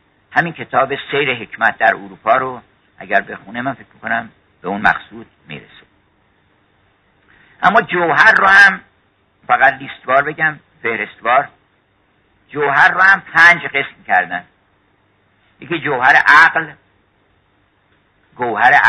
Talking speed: 110 wpm